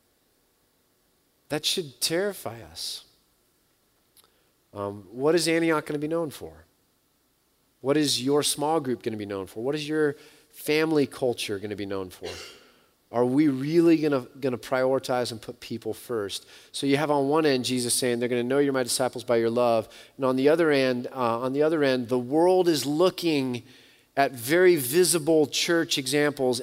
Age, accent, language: 30-49, American, English